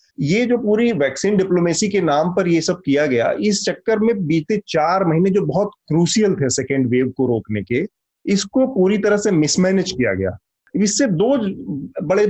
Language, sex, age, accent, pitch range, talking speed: Hindi, male, 30-49, native, 135-195 Hz, 180 wpm